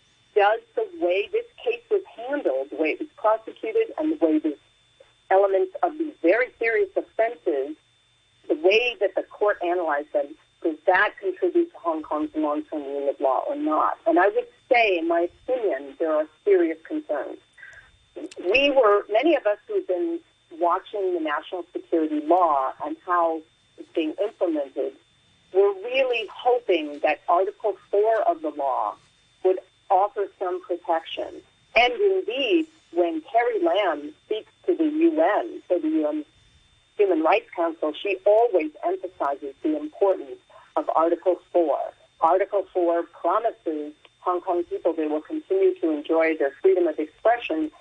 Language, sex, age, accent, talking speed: English, female, 40-59, American, 155 wpm